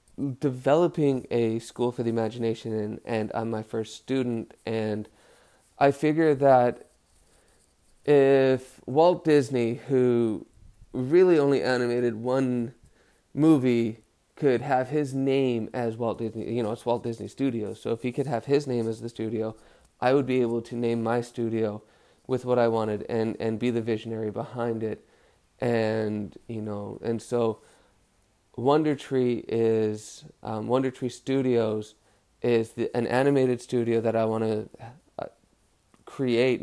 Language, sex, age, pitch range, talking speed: English, male, 30-49, 110-125 Hz, 140 wpm